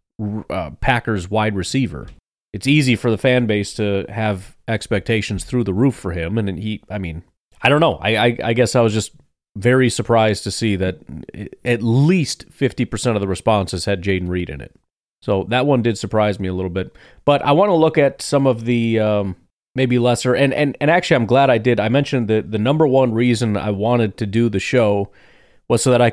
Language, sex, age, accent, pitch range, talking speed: English, male, 30-49, American, 100-125 Hz, 220 wpm